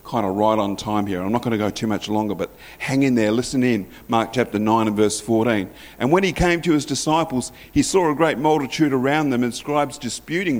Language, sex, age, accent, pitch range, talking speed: English, male, 50-69, Australian, 105-130 Hz, 245 wpm